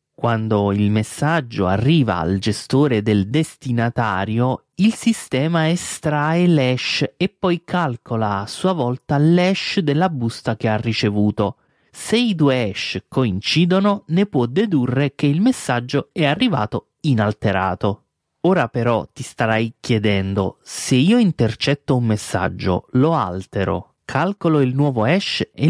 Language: Italian